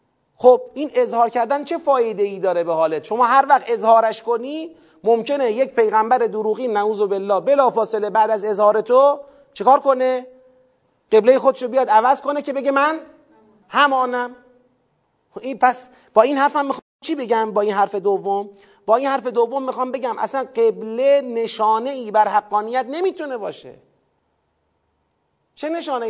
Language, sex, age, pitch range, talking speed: Persian, male, 30-49, 195-265 Hz, 145 wpm